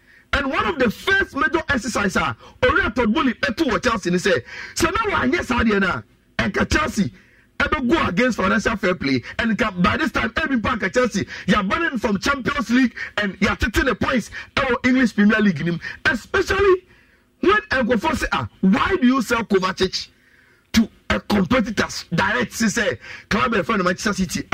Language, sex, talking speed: English, male, 175 wpm